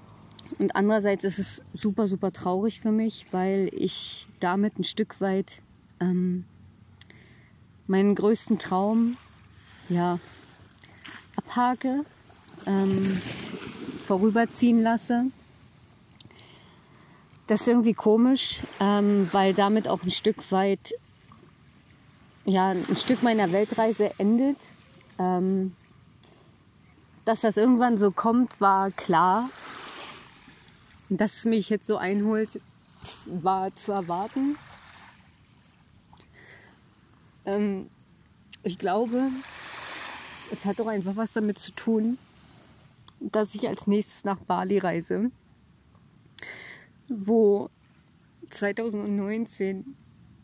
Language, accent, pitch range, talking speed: German, German, 190-220 Hz, 90 wpm